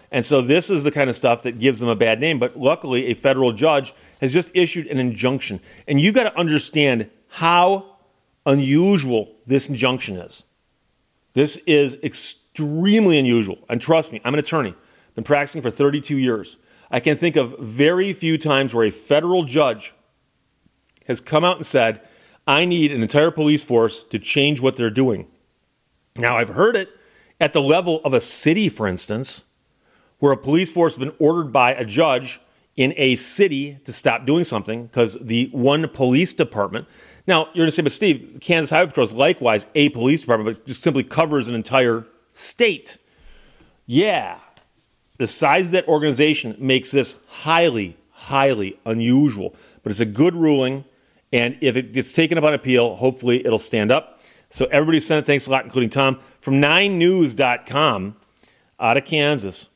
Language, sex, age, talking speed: English, male, 40-59, 175 wpm